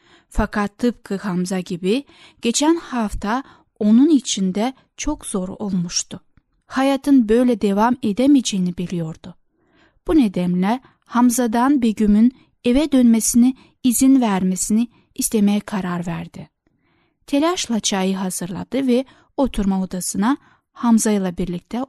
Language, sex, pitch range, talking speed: Turkish, female, 190-260 Hz, 100 wpm